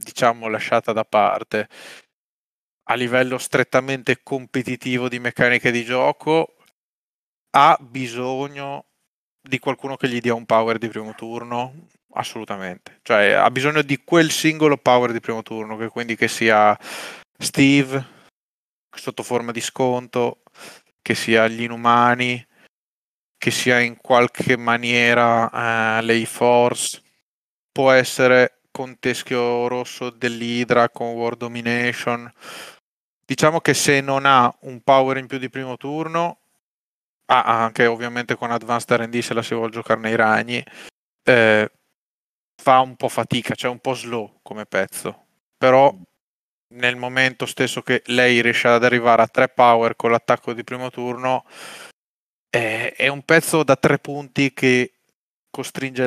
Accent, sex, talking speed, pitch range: native, male, 135 wpm, 115-130 Hz